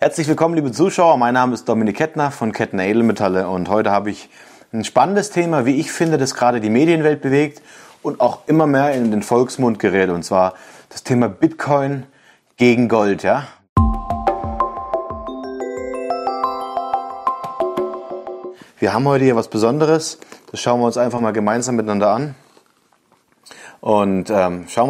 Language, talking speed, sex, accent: German, 145 wpm, male, German